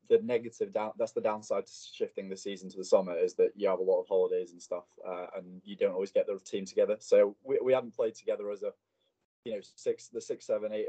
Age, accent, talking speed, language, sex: 20-39, British, 260 wpm, English, male